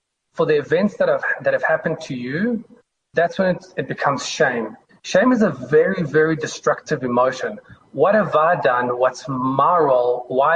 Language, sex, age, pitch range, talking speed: English, male, 30-49, 135-165 Hz, 165 wpm